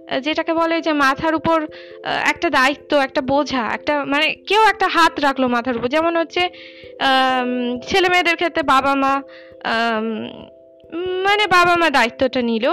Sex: female